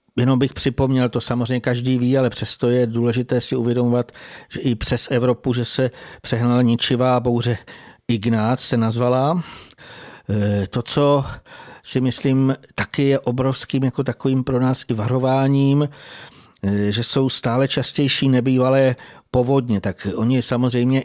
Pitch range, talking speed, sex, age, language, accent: 120-130 Hz, 135 wpm, male, 50-69, Czech, native